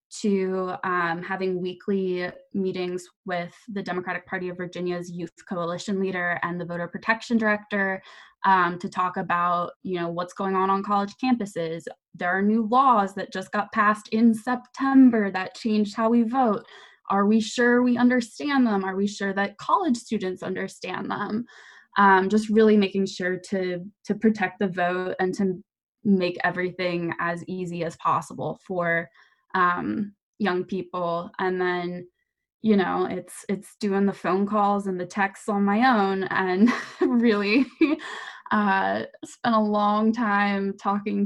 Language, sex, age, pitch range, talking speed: English, female, 10-29, 180-220 Hz, 155 wpm